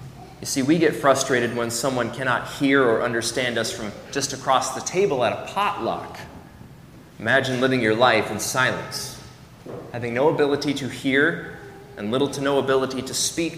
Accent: American